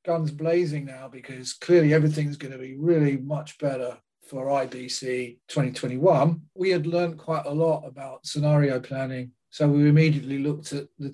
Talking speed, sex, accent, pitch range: 160 wpm, male, British, 135-155 Hz